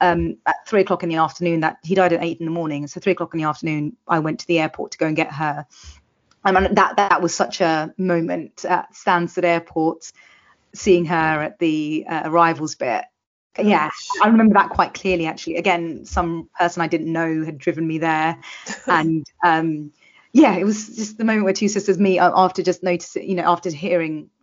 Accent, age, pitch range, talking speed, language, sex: British, 30-49, 165-200 Hz, 210 wpm, English, female